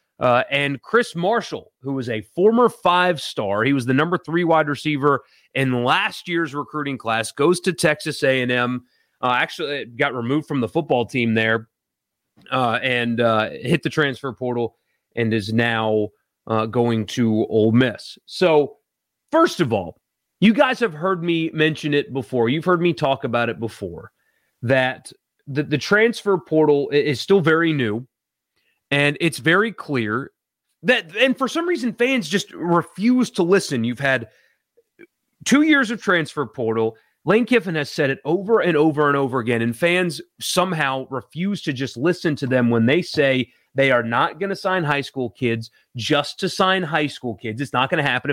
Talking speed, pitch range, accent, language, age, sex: 175 wpm, 125-175 Hz, American, English, 30-49, male